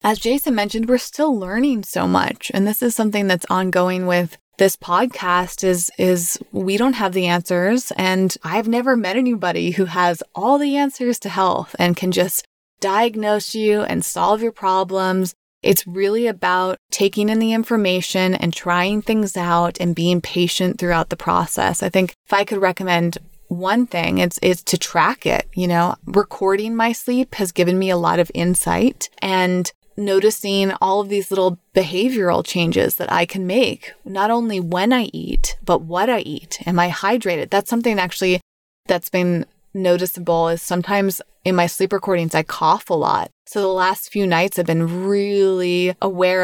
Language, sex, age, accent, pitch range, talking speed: English, female, 20-39, American, 180-215 Hz, 175 wpm